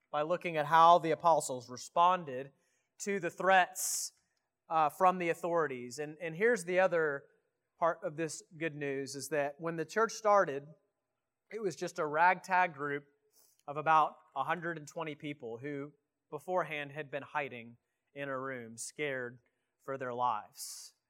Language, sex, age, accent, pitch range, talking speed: English, male, 30-49, American, 135-170 Hz, 150 wpm